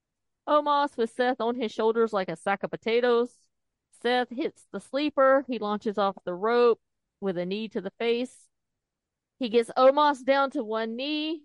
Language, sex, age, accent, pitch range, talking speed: English, female, 40-59, American, 215-275 Hz, 175 wpm